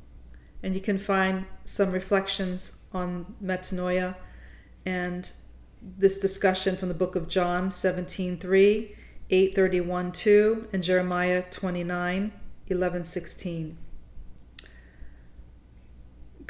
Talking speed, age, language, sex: 75 wpm, 40-59, English, female